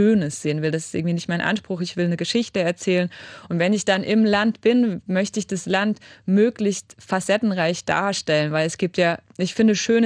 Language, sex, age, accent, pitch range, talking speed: German, female, 20-39, German, 180-215 Hz, 205 wpm